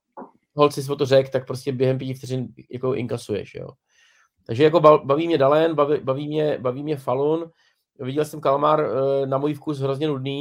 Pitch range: 130-145 Hz